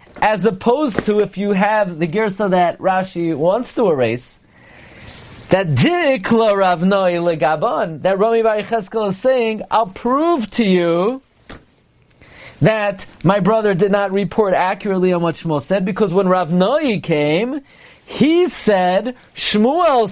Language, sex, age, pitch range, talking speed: English, male, 30-49, 155-210 Hz, 140 wpm